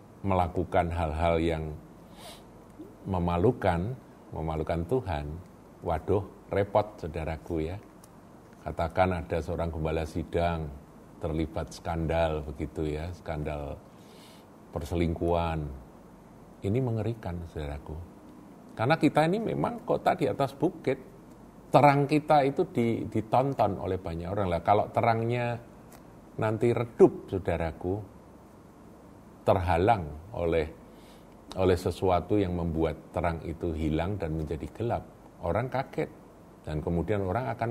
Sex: male